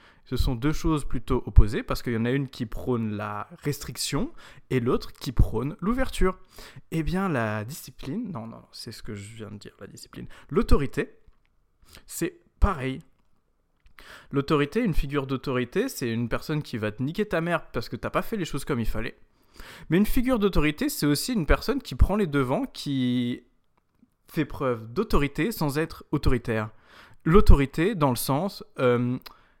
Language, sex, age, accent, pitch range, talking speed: French, male, 20-39, French, 115-155 Hz, 175 wpm